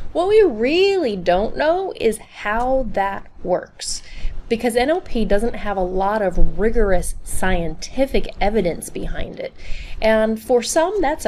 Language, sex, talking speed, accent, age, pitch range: English, female, 135 wpm, American, 30-49, 180-245 Hz